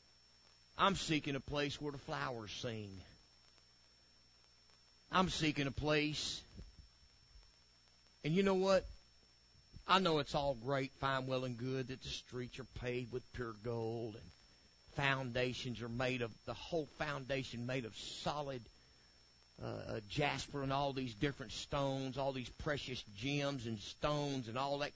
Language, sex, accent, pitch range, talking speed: English, male, American, 90-140 Hz, 145 wpm